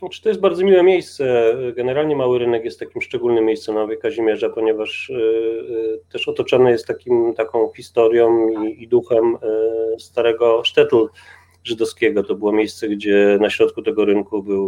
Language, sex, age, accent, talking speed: Polish, male, 30-49, native, 170 wpm